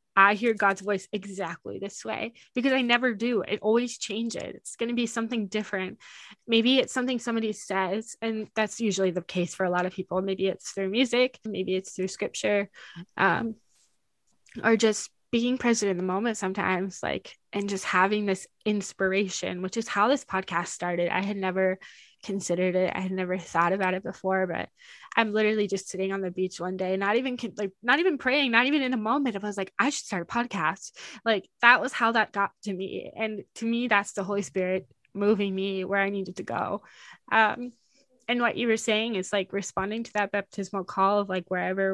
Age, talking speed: 10-29, 205 wpm